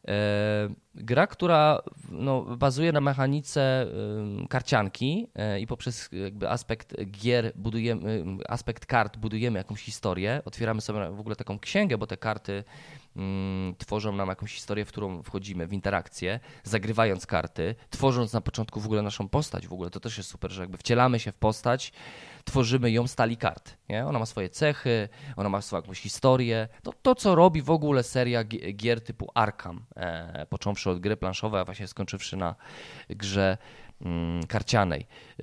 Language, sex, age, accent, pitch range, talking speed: Polish, male, 20-39, native, 105-150 Hz, 150 wpm